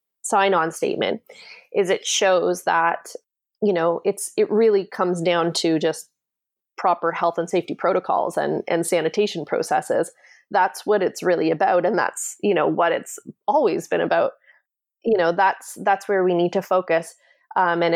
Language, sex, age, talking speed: English, female, 20-39, 165 wpm